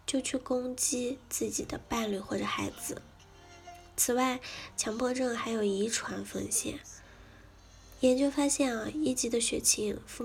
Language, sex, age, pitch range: Chinese, female, 10-29, 195-250 Hz